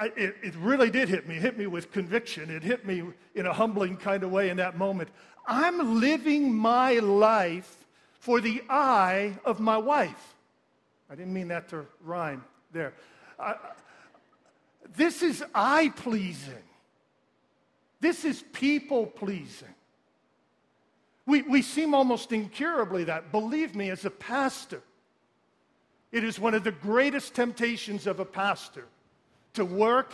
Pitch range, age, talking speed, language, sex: 195-250 Hz, 50-69, 135 wpm, English, male